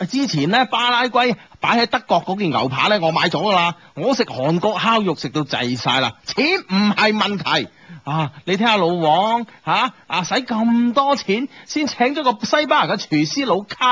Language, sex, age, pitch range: Chinese, male, 30-49, 150-235 Hz